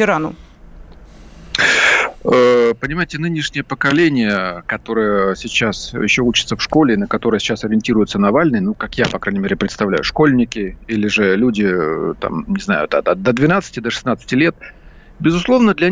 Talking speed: 130 wpm